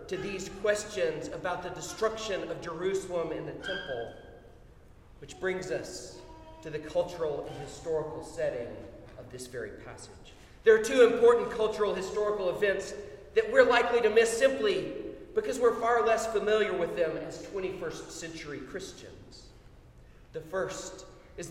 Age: 40-59